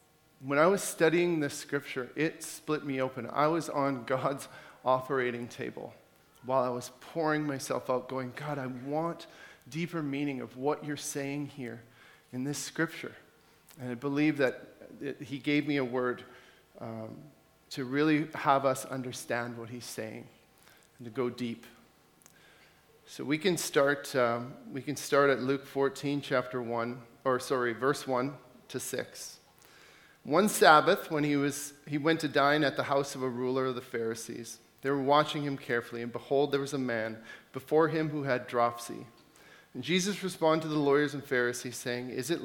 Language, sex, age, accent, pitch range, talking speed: English, male, 40-59, American, 125-150 Hz, 175 wpm